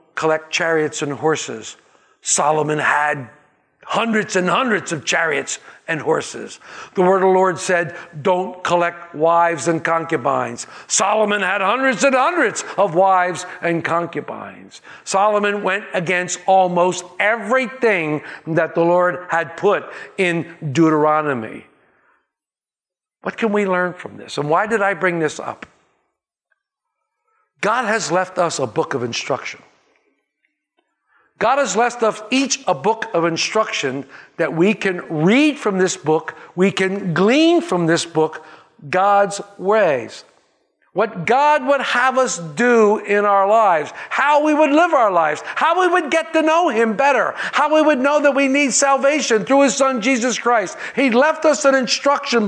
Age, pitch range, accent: 60-79, 170-275 Hz, American